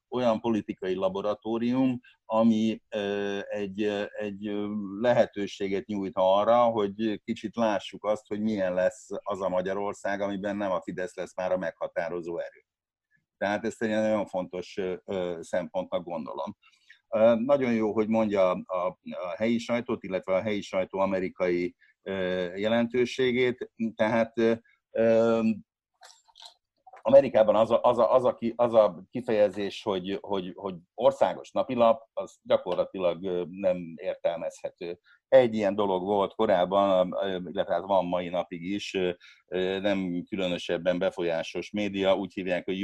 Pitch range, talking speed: 95-115 Hz, 120 wpm